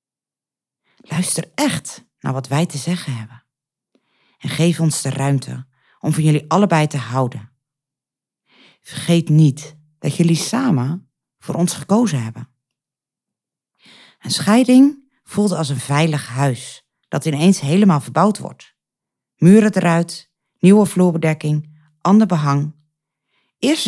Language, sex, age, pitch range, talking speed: Dutch, female, 40-59, 140-180 Hz, 120 wpm